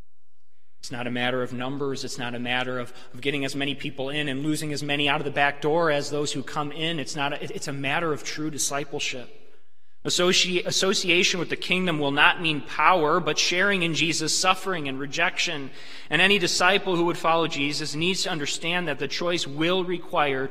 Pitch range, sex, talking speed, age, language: 130-180 Hz, male, 200 wpm, 30-49, English